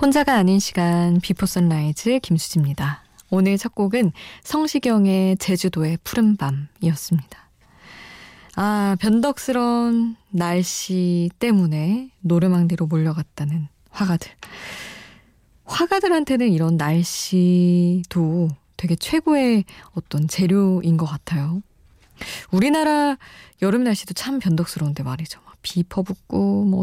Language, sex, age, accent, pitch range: Korean, female, 20-39, native, 165-210 Hz